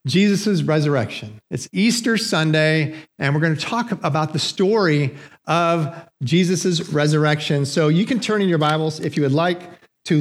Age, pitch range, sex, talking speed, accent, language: 50-69, 145-190 Hz, male, 165 wpm, American, English